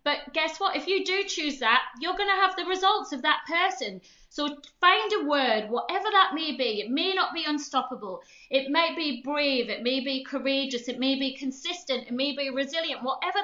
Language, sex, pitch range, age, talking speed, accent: English, female, 255-325 Hz, 30-49, 210 wpm, British